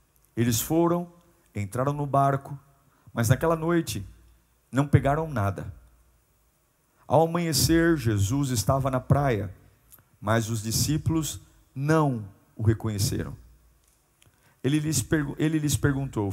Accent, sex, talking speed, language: Brazilian, male, 100 wpm, Portuguese